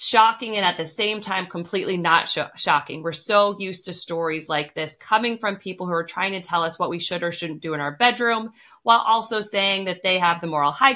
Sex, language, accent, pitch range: female, English, American, 180-225 Hz